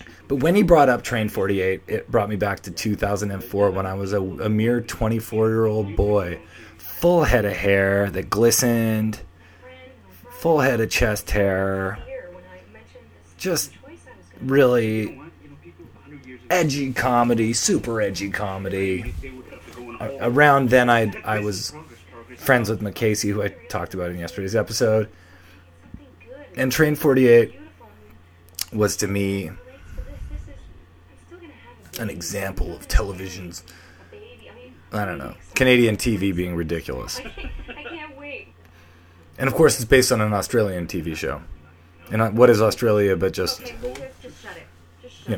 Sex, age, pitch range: male, 30-49, 90-115 Hz